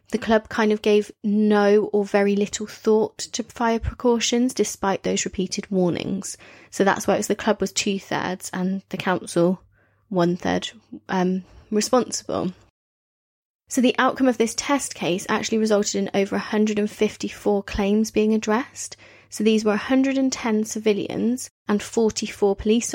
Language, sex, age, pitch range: English, female, 20-39, 195-225 Hz